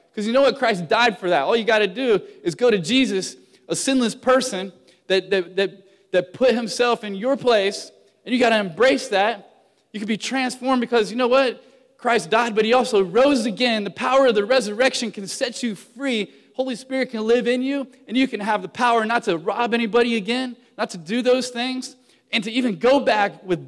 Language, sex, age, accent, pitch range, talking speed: English, male, 20-39, American, 175-245 Hz, 220 wpm